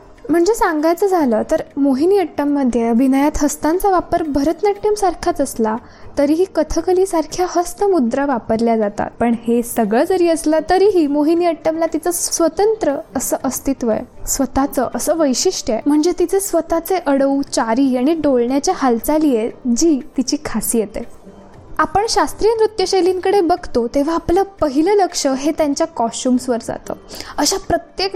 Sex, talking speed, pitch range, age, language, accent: female, 125 wpm, 250-345 Hz, 10-29, Marathi, native